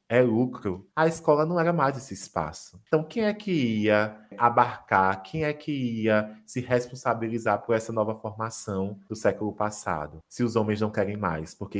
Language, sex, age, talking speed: Portuguese, male, 20-39, 180 wpm